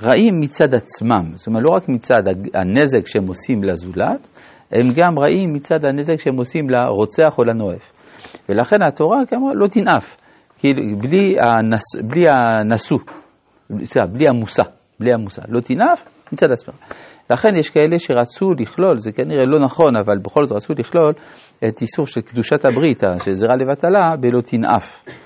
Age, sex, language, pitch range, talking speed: 50-69, male, Hebrew, 110-155 Hz, 145 wpm